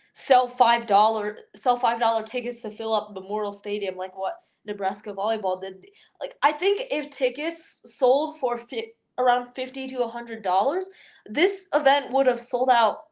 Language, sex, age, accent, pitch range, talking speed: English, female, 10-29, American, 205-270 Hz, 170 wpm